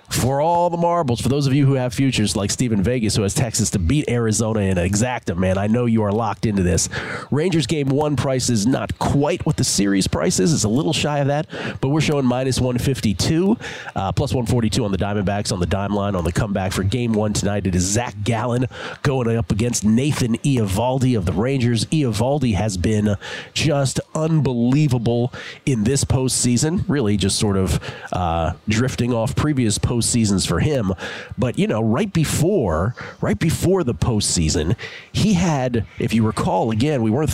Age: 30-49